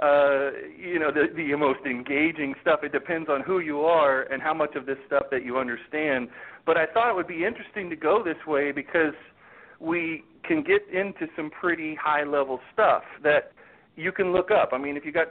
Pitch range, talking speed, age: 150-195 Hz, 210 wpm, 40-59